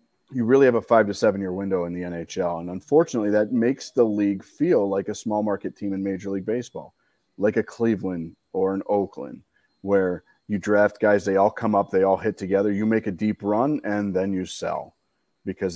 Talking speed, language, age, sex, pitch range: 210 wpm, English, 40-59, male, 90-110 Hz